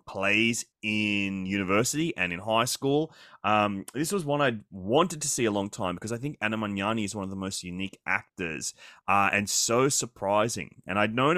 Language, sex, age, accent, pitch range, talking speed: English, male, 20-39, Australian, 100-125 Hz, 195 wpm